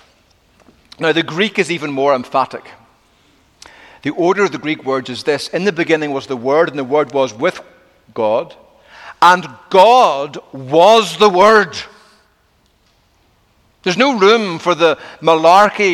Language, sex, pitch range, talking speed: English, male, 140-190 Hz, 145 wpm